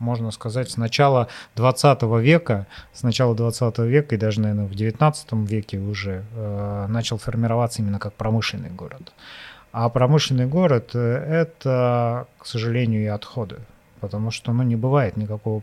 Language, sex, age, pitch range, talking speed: Russian, male, 30-49, 115-135 Hz, 145 wpm